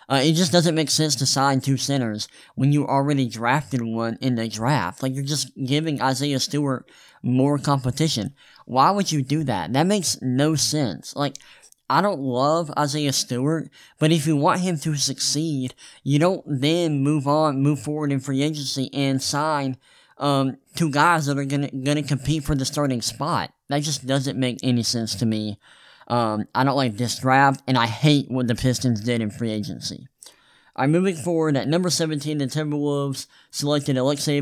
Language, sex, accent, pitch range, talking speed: English, male, American, 130-150 Hz, 185 wpm